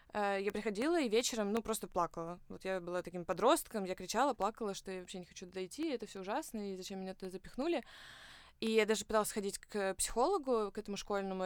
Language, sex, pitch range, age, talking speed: Russian, female, 185-225 Hz, 20-39, 200 wpm